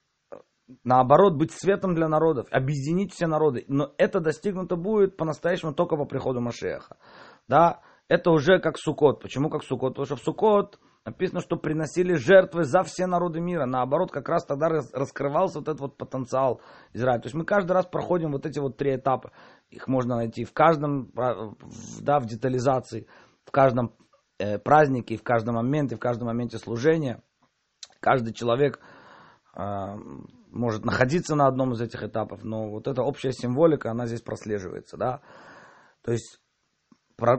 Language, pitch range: Russian, 125-165 Hz